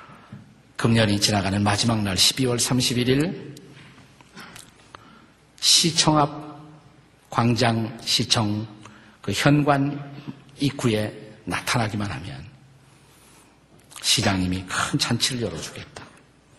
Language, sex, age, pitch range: Korean, male, 50-69, 105-140 Hz